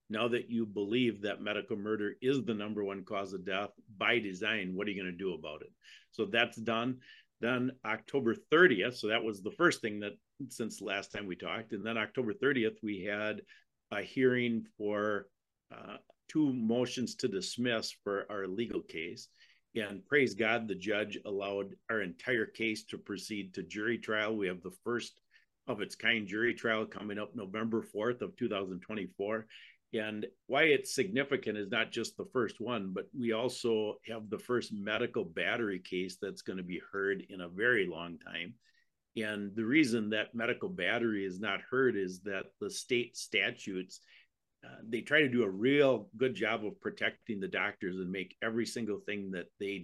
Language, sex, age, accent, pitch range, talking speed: English, male, 50-69, American, 100-115 Hz, 180 wpm